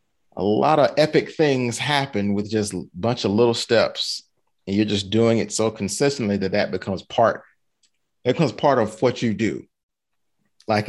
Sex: male